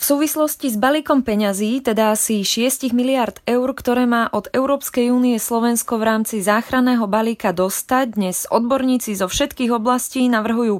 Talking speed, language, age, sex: 150 wpm, Slovak, 20-39, female